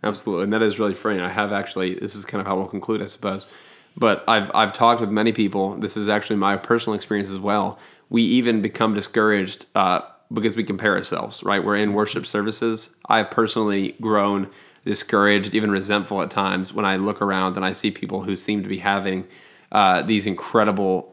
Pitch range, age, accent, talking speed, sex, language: 100-110 Hz, 20-39, American, 205 wpm, male, English